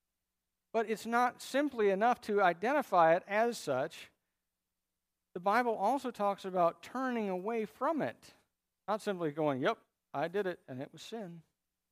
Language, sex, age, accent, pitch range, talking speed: English, male, 50-69, American, 135-195 Hz, 150 wpm